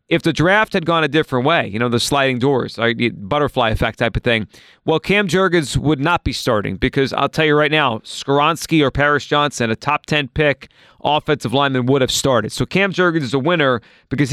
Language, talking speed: English, 215 wpm